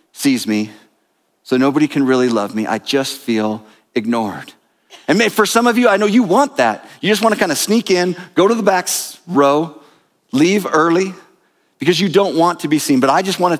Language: English